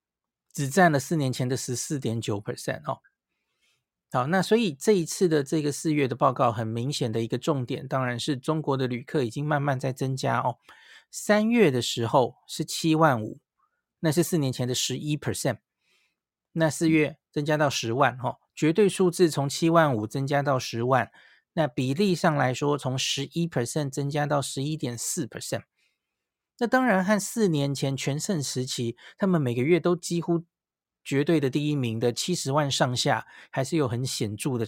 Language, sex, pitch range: Chinese, male, 130-165 Hz